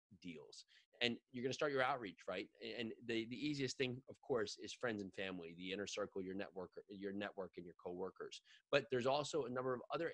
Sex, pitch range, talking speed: male, 100-130 Hz, 220 wpm